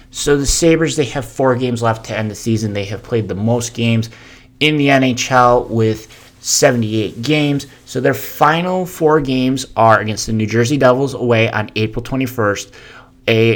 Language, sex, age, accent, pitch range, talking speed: English, male, 30-49, American, 115-130 Hz, 175 wpm